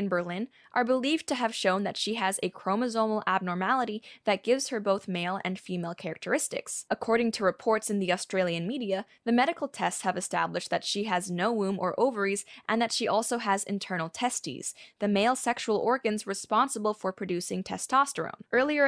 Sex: female